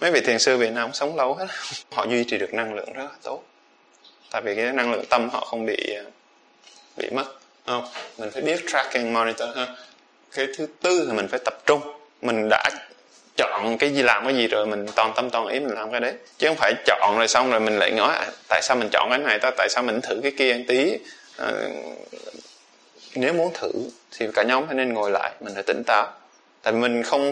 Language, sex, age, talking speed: Vietnamese, male, 20-39, 240 wpm